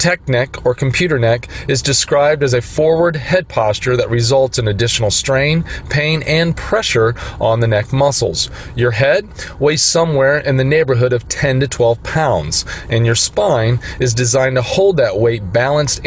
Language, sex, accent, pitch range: English, male, American, 115-140 Hz